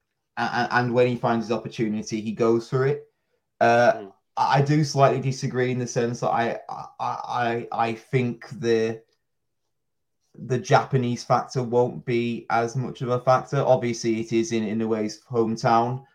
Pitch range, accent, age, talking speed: 110-120 Hz, British, 20-39, 155 wpm